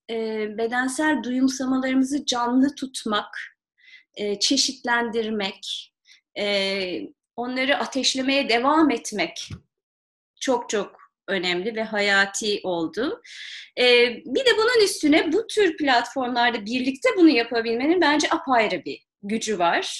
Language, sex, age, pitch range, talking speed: Turkish, female, 30-49, 235-320 Hz, 90 wpm